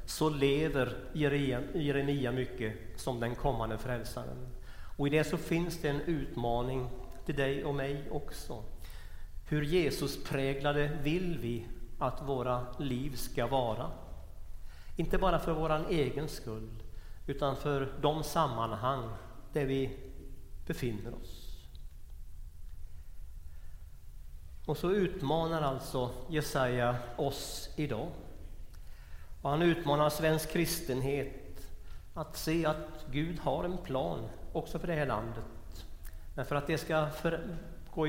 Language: Swedish